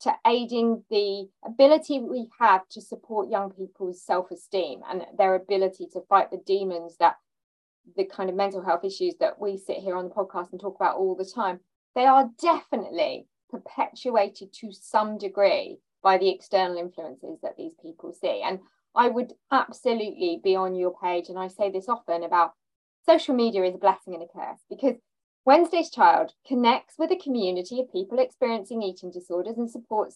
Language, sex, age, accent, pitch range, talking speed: English, female, 20-39, British, 190-250 Hz, 175 wpm